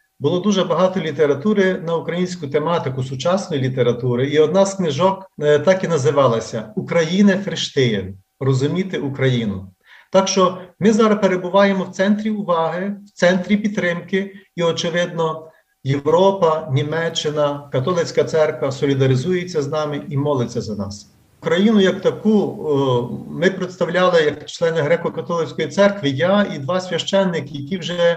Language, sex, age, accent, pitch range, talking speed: Ukrainian, male, 40-59, native, 145-185 Hz, 125 wpm